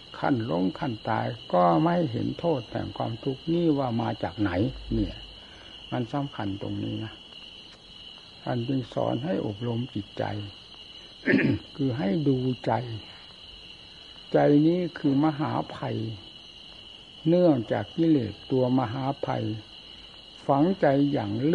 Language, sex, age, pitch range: Thai, male, 60-79, 105-150 Hz